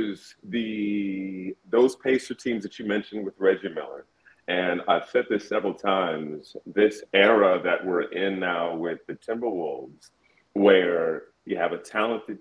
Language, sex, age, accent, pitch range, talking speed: English, male, 40-59, American, 95-115 Hz, 145 wpm